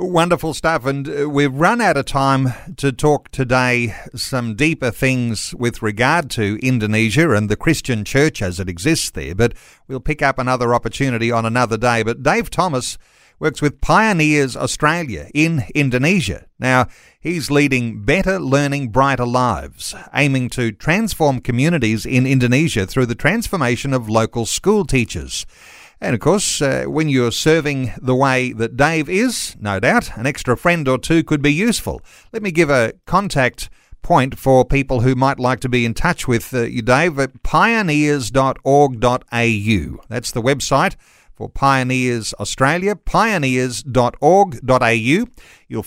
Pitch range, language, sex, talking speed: 120-150 Hz, English, male, 150 wpm